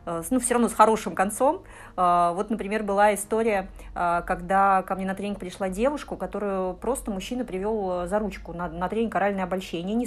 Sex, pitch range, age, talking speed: female, 195-255 Hz, 30-49, 175 wpm